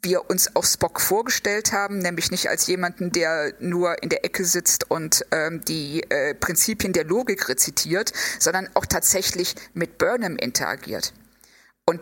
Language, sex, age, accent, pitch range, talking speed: German, female, 50-69, German, 175-215 Hz, 155 wpm